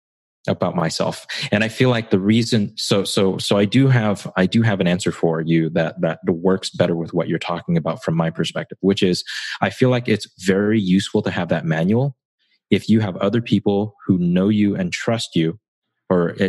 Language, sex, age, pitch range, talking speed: English, male, 30-49, 85-110 Hz, 205 wpm